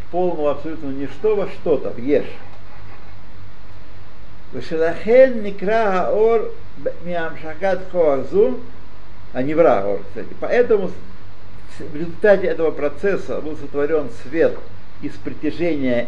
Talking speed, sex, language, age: 80 wpm, male, Russian, 50-69